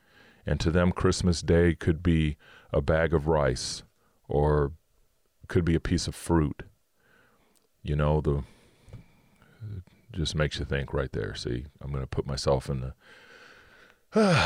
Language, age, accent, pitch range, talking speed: English, 40-59, American, 80-90 Hz, 155 wpm